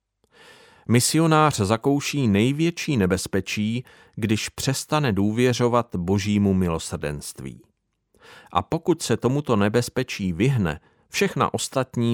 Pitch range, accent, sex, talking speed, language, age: 95-130 Hz, native, male, 85 wpm, Czech, 40-59